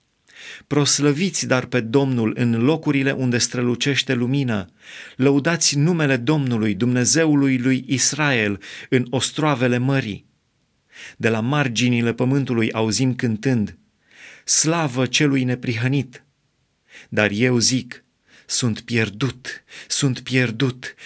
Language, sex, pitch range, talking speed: Romanian, male, 120-145 Hz, 95 wpm